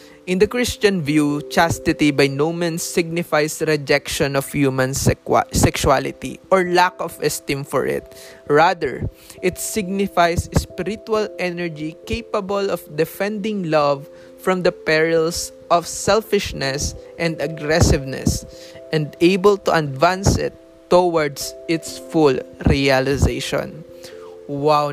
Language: English